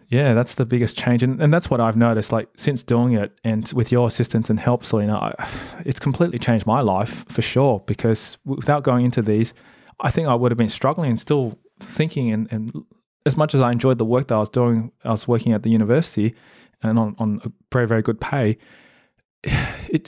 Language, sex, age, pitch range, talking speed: English, male, 20-39, 110-130 Hz, 220 wpm